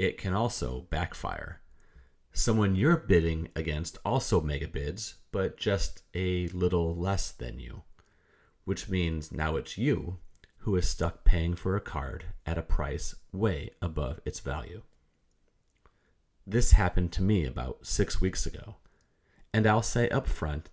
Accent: American